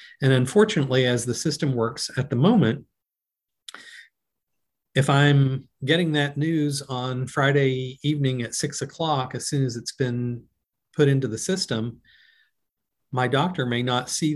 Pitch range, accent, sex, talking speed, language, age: 120-140 Hz, American, male, 140 wpm, English, 40-59